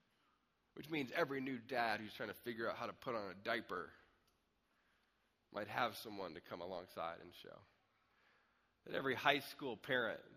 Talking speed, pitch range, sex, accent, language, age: 170 wpm, 100-130 Hz, male, American, English, 20-39